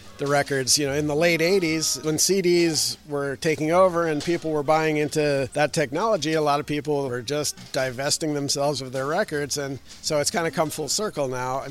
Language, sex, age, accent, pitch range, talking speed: English, male, 50-69, American, 130-155 Hz, 210 wpm